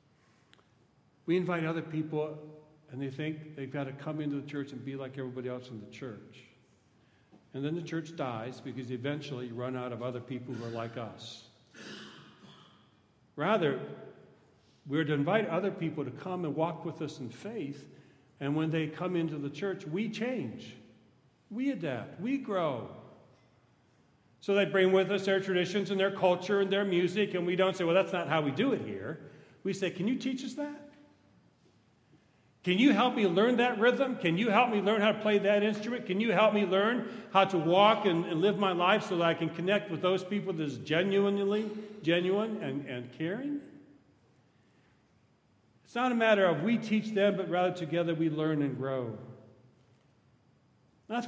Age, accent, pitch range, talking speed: 50-69, American, 135-200 Hz, 185 wpm